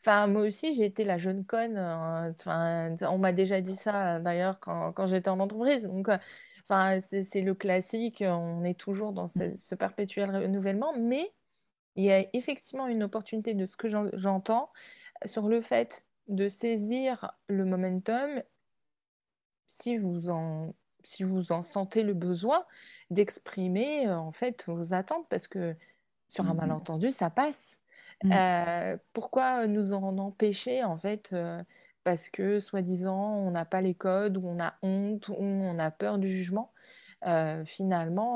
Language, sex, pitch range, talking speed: French, female, 180-220 Hz, 160 wpm